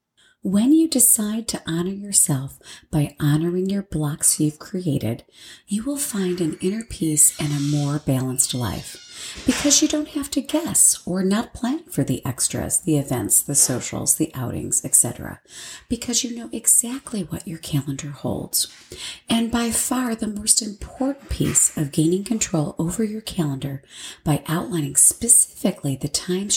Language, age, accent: English, 40-59, American